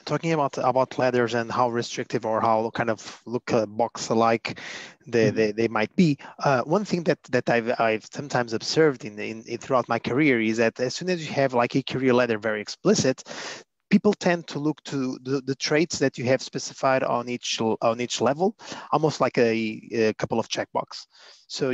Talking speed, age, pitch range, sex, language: 200 wpm, 30-49, 115-140 Hz, male, English